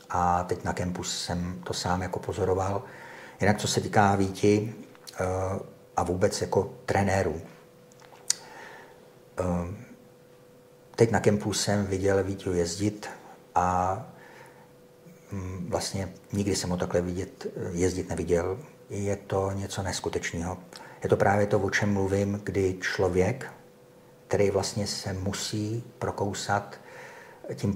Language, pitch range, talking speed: Czech, 95-110 Hz, 115 wpm